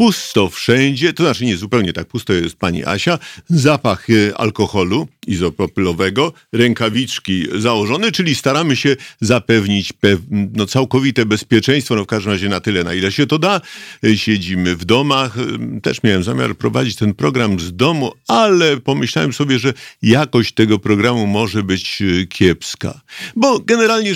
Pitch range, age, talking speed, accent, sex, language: 100-145 Hz, 50-69, 145 wpm, native, male, Polish